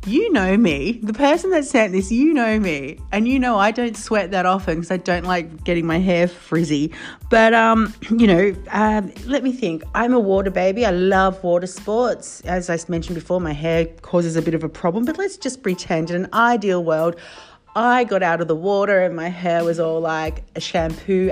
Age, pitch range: 40-59, 170-215 Hz